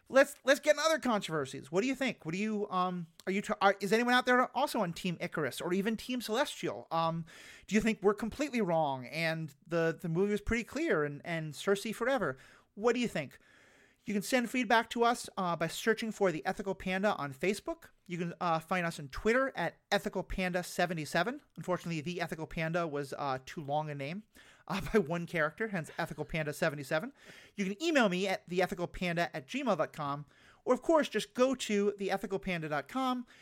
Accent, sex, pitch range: American, male, 160-215 Hz